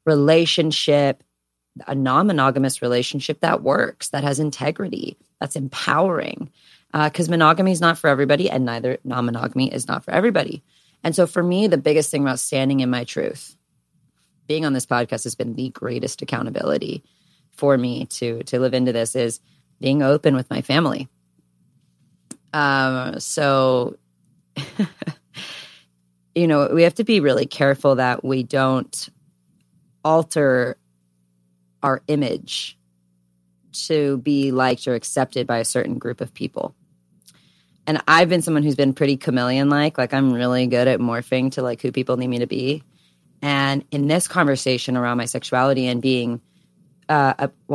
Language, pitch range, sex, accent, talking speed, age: English, 125-145 Hz, female, American, 150 wpm, 30-49